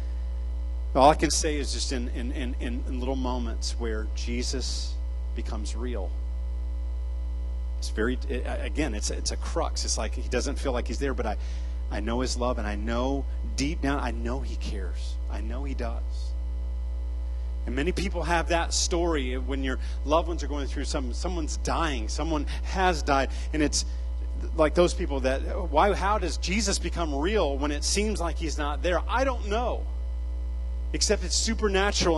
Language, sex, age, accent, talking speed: English, male, 30-49, American, 180 wpm